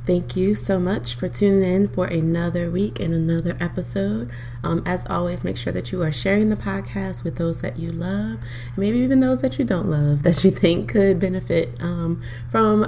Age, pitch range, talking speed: 20-39, 120-180 Hz, 200 wpm